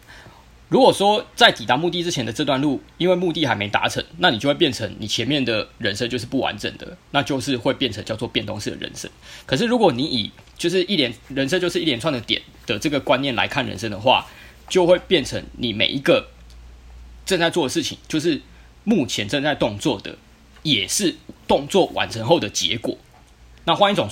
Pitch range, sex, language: 115-175 Hz, male, Chinese